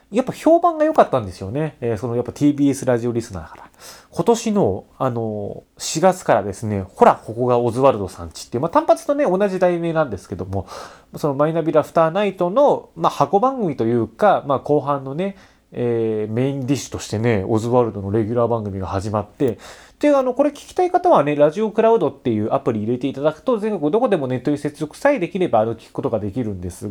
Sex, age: male, 30-49